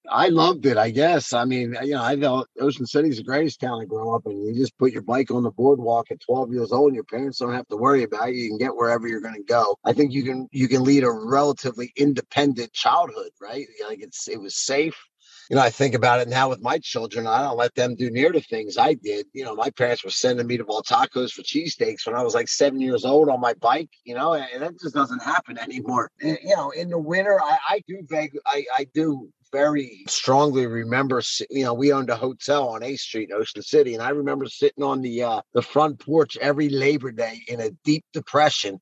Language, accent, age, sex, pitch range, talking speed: English, American, 30-49, male, 125-150 Hz, 250 wpm